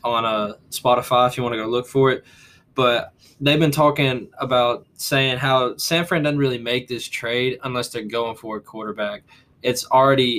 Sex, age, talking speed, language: male, 10-29, 190 wpm, English